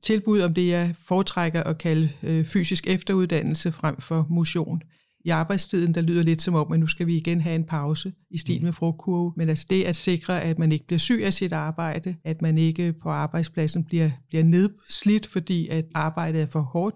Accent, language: Danish, English